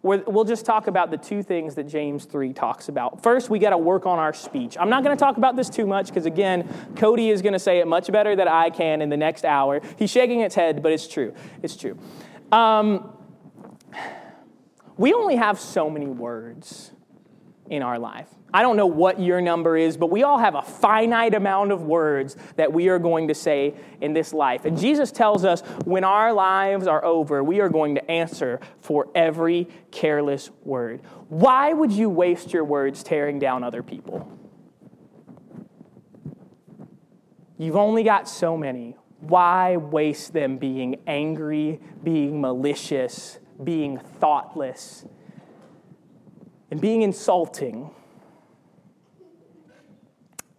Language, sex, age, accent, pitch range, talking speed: English, male, 30-49, American, 150-205 Hz, 160 wpm